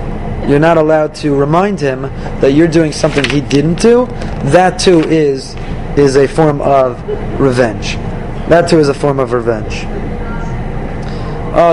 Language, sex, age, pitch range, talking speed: English, male, 30-49, 145-180 Hz, 150 wpm